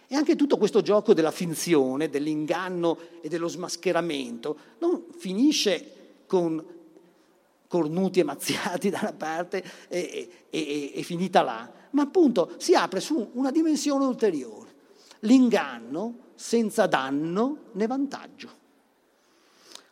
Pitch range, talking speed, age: 160-245 Hz, 110 wpm, 50-69